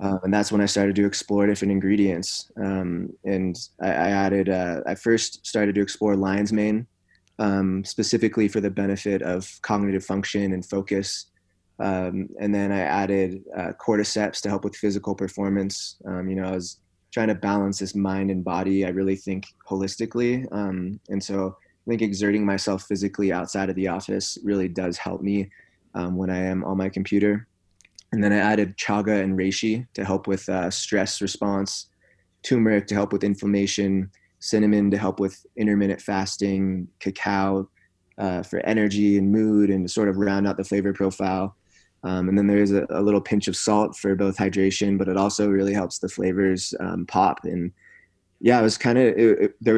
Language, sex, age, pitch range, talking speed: English, male, 20-39, 95-105 Hz, 185 wpm